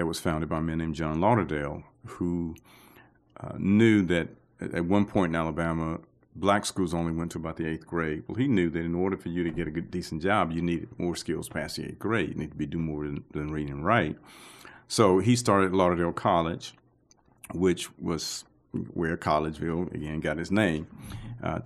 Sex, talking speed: male, 200 wpm